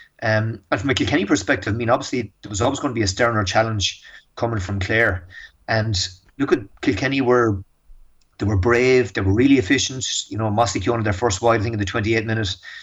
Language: English